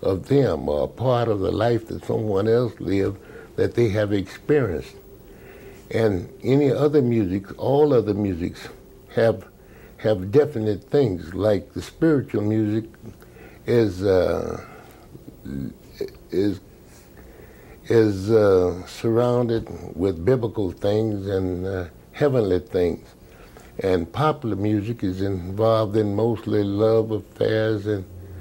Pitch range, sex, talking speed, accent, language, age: 95-120 Hz, male, 115 wpm, American, German, 60-79